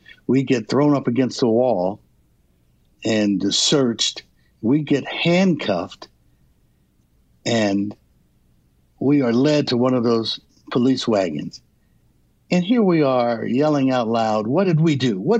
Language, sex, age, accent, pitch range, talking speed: English, male, 60-79, American, 105-145 Hz, 135 wpm